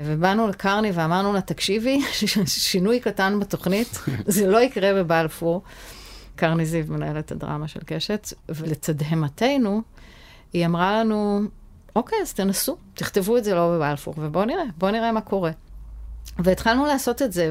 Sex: female